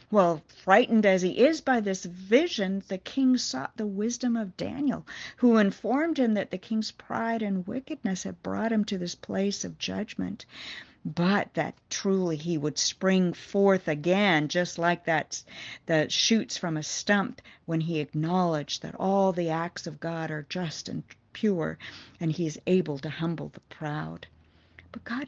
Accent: American